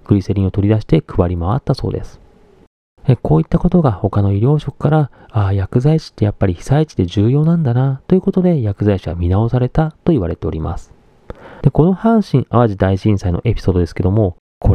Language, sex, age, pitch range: Japanese, male, 40-59, 95-140 Hz